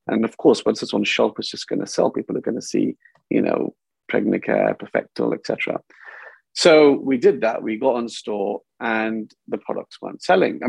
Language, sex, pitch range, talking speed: English, male, 110-140 Hz, 210 wpm